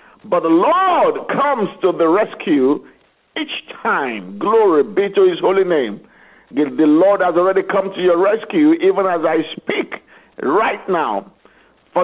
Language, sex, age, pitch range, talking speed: English, male, 50-69, 165-230 Hz, 150 wpm